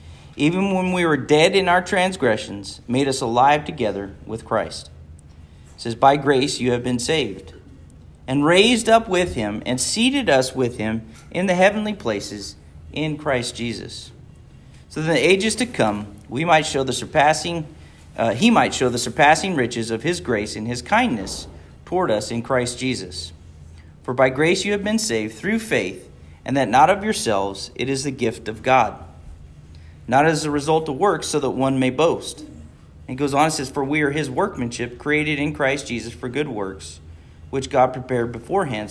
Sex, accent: male, American